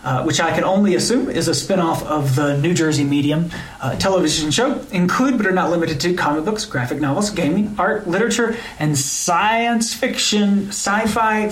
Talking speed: 175 wpm